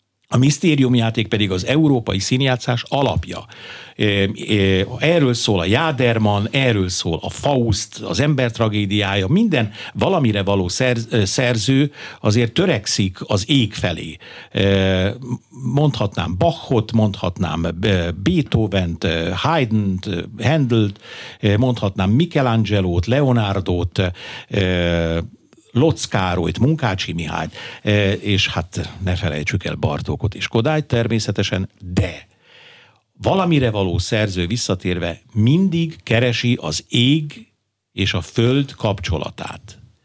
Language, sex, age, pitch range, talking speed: Hungarian, male, 60-79, 95-125 Hz, 90 wpm